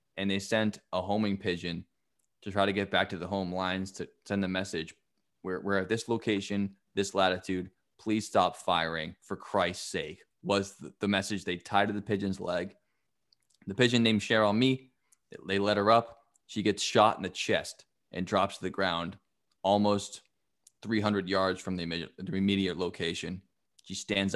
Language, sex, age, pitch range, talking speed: English, male, 20-39, 95-110 Hz, 175 wpm